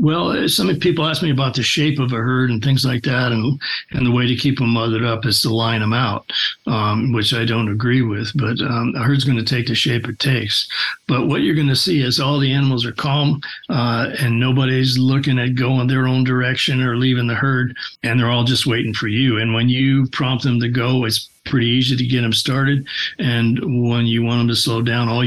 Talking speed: 240 wpm